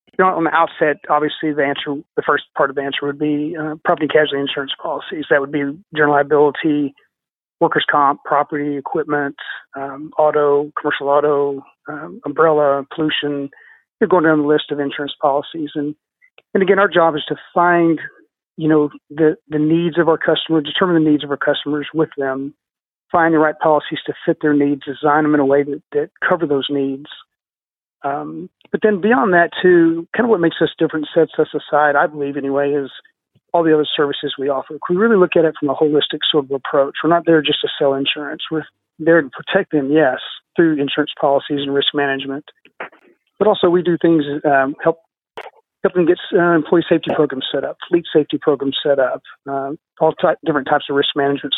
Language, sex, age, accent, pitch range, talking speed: English, male, 40-59, American, 145-165 Hz, 200 wpm